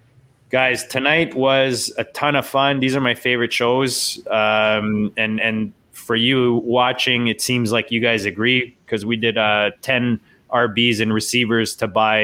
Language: English